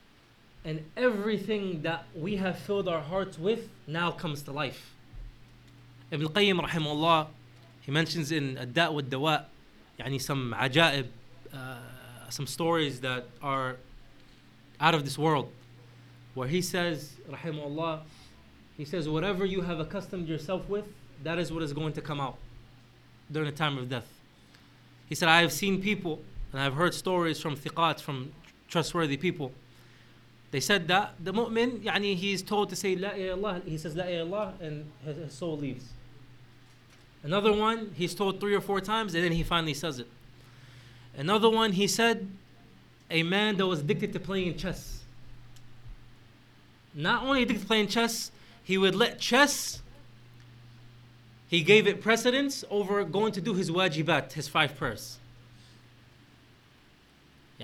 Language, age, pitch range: English, 20-39, 125-185 Hz